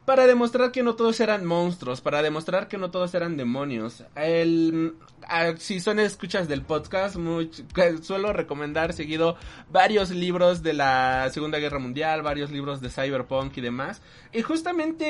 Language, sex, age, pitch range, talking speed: Spanish, male, 30-49, 165-225 Hz, 160 wpm